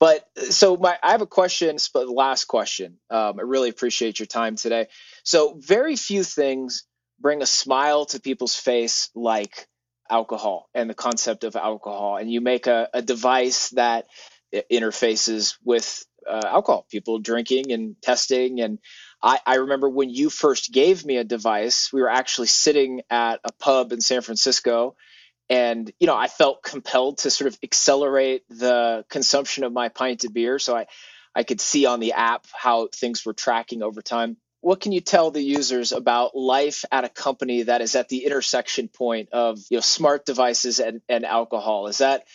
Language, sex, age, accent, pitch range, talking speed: English, male, 20-39, American, 115-145 Hz, 185 wpm